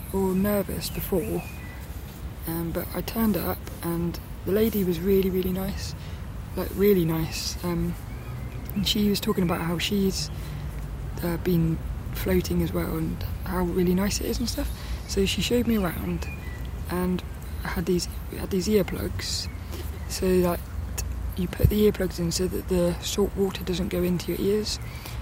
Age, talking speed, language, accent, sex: 20-39, 165 wpm, English, British, female